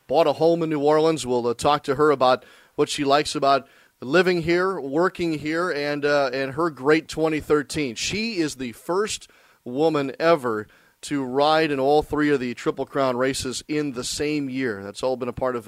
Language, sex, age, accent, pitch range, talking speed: English, male, 40-59, American, 125-155 Hz, 200 wpm